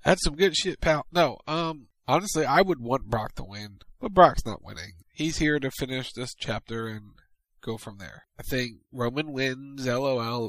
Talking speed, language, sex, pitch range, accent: 190 wpm, English, male, 110-135 Hz, American